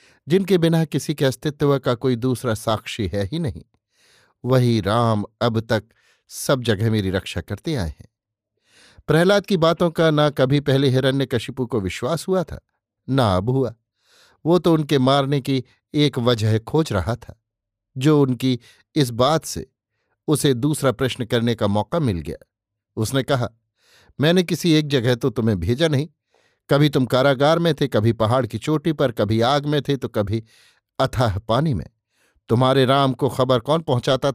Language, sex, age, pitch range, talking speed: Hindi, male, 50-69, 115-145 Hz, 170 wpm